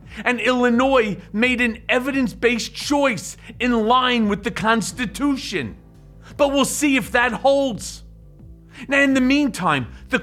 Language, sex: English, male